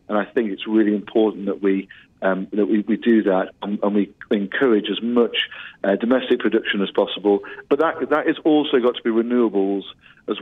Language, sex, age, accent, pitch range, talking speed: English, male, 40-59, British, 105-120 Hz, 200 wpm